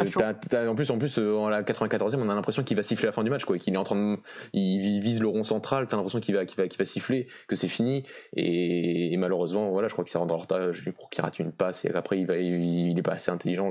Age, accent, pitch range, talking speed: 20-39, French, 90-105 Hz, 300 wpm